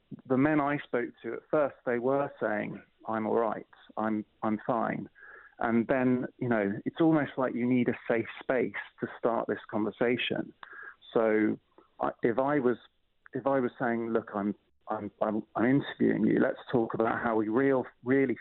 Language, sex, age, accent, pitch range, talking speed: English, male, 30-49, British, 115-130 Hz, 175 wpm